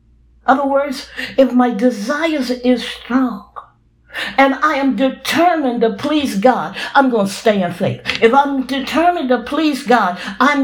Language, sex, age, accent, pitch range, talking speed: English, female, 50-69, American, 200-275 Hz, 145 wpm